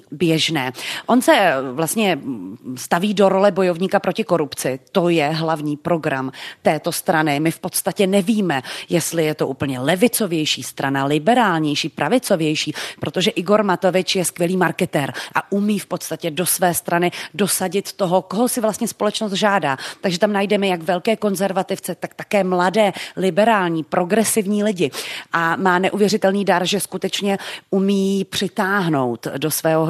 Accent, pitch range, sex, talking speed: native, 165-195 Hz, female, 140 wpm